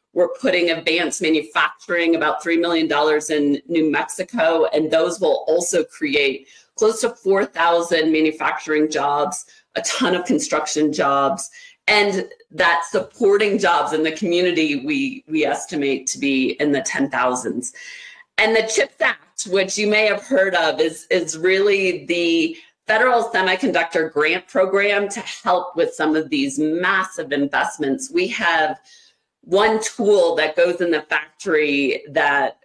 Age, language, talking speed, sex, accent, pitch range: 40-59, English, 140 wpm, female, American, 150-205 Hz